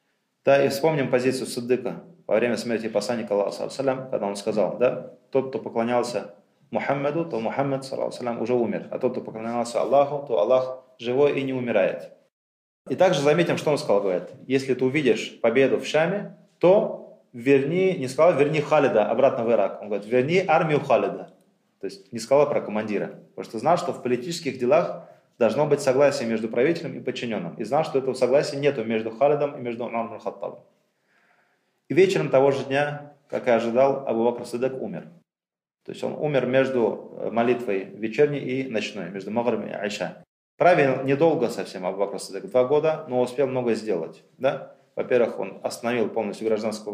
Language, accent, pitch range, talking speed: Russian, native, 115-140 Hz, 170 wpm